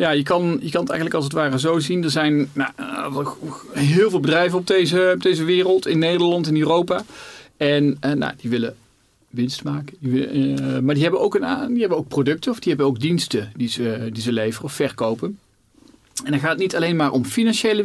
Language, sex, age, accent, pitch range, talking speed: Dutch, male, 40-59, Dutch, 130-170 Hz, 185 wpm